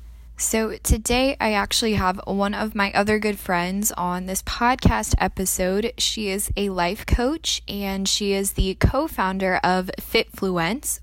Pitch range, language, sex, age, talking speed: 170-205 Hz, English, female, 10-29, 145 wpm